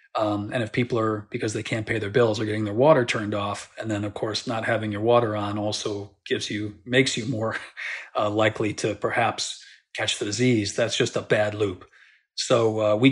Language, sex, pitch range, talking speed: English, male, 110-125 Hz, 215 wpm